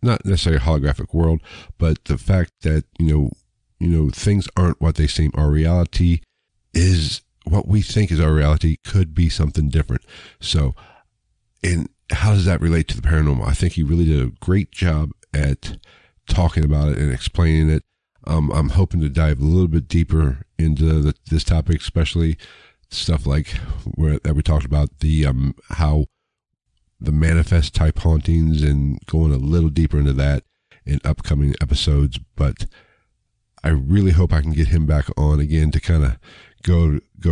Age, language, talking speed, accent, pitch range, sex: 50-69, English, 175 wpm, American, 75-90 Hz, male